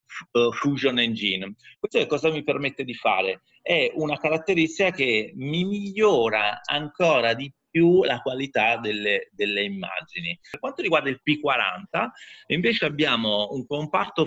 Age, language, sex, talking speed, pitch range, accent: 30-49, Italian, male, 145 wpm, 115-175 Hz, native